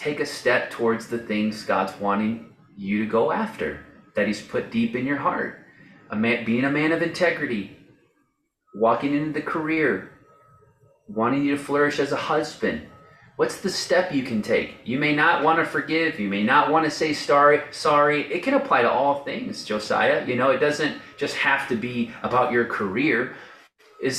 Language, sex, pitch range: English, male, 110-150 Hz